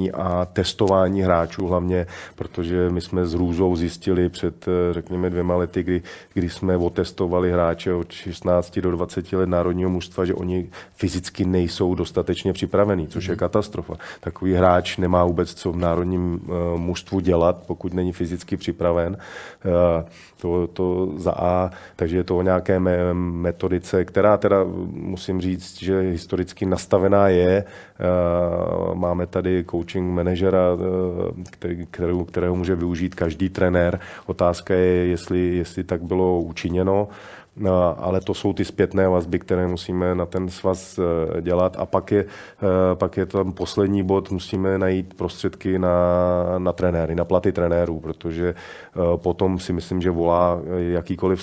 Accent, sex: native, male